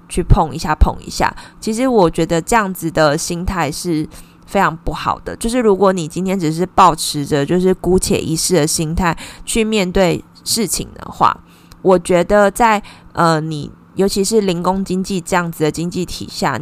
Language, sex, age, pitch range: Chinese, female, 20-39, 170-205 Hz